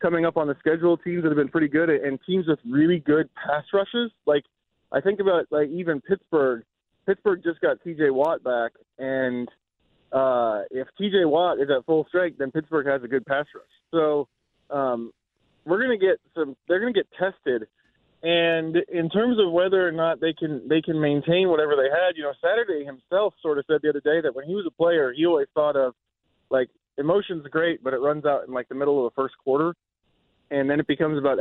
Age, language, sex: 20-39, English, male